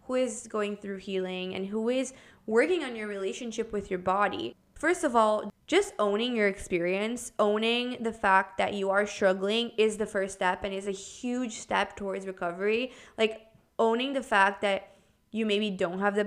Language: English